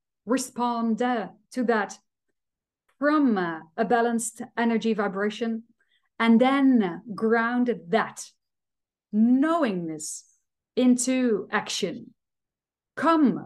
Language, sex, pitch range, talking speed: English, female, 205-245 Hz, 80 wpm